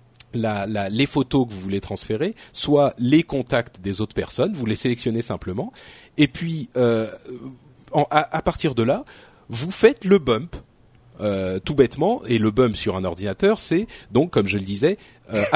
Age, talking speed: 40-59, 170 wpm